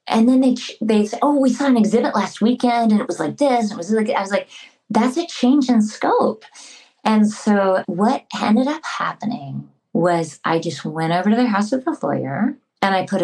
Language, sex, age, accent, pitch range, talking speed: English, female, 30-49, American, 185-245 Hz, 220 wpm